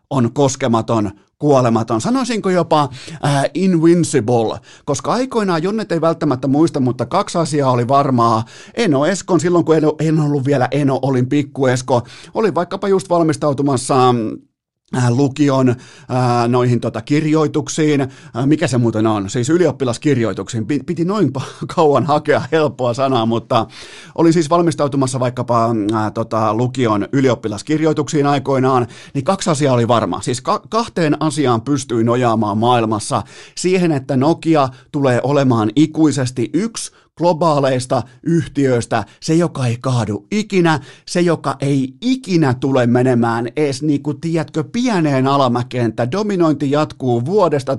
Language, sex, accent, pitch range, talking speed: Finnish, male, native, 125-160 Hz, 120 wpm